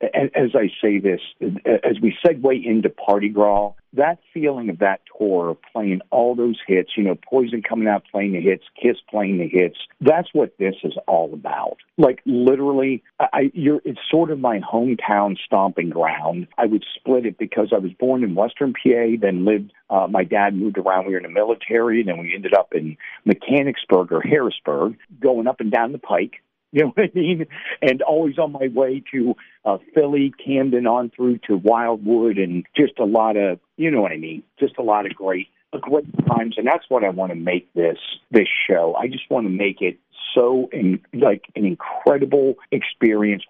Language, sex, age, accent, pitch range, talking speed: English, male, 50-69, American, 95-130 Hz, 195 wpm